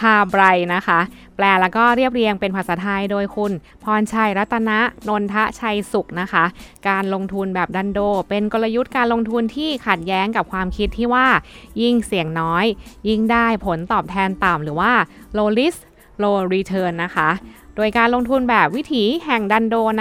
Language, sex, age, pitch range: Thai, female, 20-39, 185-235 Hz